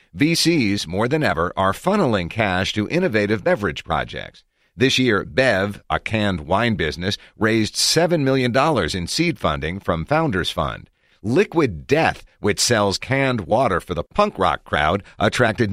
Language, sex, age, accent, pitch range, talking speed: English, male, 50-69, American, 90-115 Hz, 150 wpm